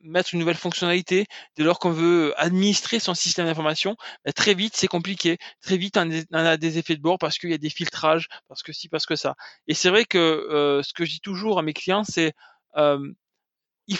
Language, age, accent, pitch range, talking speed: French, 20-39, French, 155-185 Hz, 220 wpm